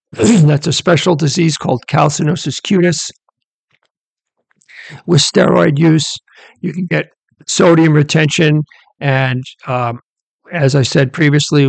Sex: male